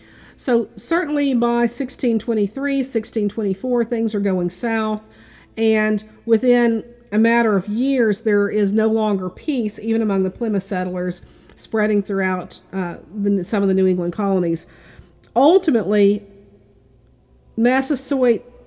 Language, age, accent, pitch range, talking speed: English, 50-69, American, 190-230 Hz, 120 wpm